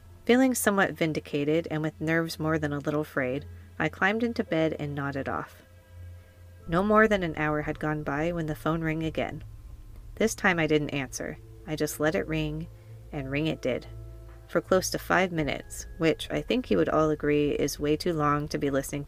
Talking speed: 200 wpm